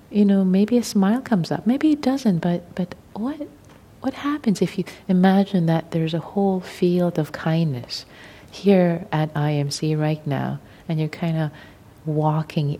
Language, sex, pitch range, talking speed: English, female, 150-195 Hz, 165 wpm